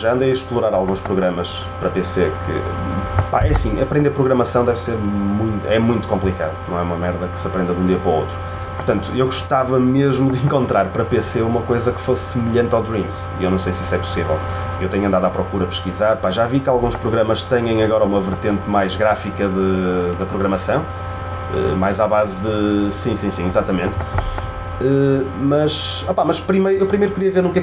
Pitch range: 85-130 Hz